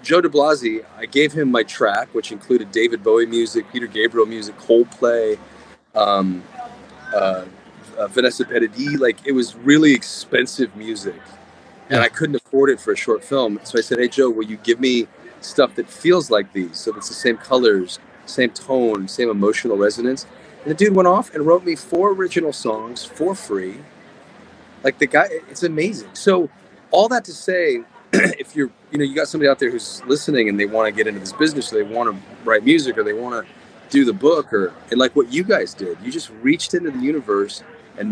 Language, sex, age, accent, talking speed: English, male, 30-49, American, 205 wpm